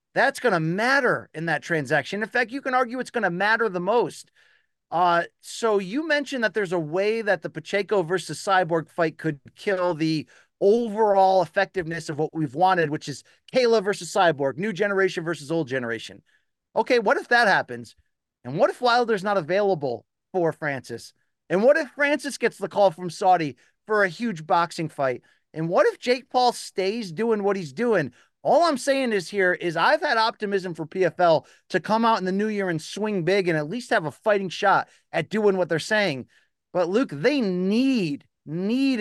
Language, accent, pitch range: English, American, 160-220 Hz